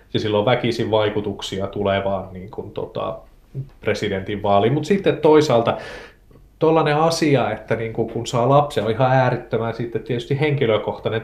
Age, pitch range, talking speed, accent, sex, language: 30-49, 105-130 Hz, 135 wpm, native, male, Finnish